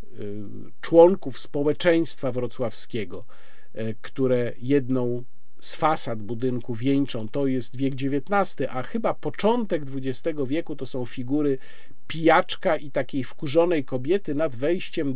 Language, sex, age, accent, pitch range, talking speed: Polish, male, 50-69, native, 135-190 Hz, 110 wpm